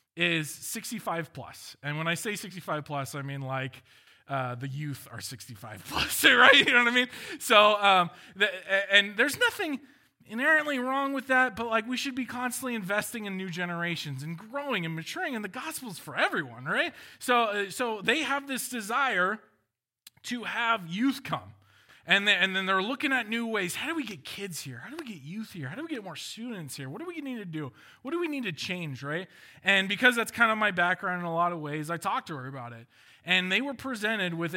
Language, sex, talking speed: English, male, 220 wpm